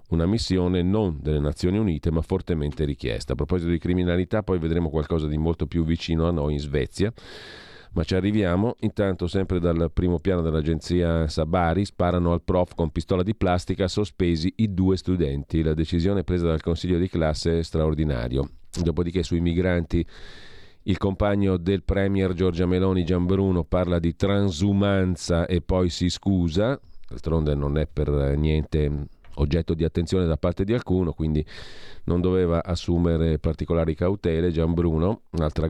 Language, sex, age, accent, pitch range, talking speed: Italian, male, 40-59, native, 80-95 Hz, 155 wpm